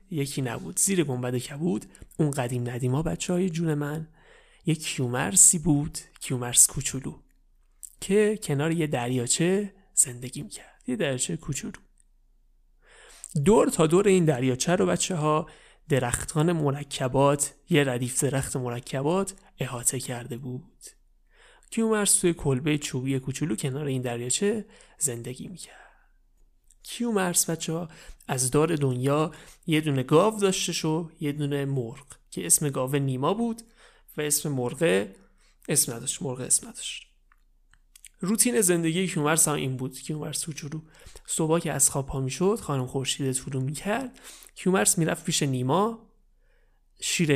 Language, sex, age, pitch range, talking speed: Persian, male, 30-49, 135-175 Hz, 135 wpm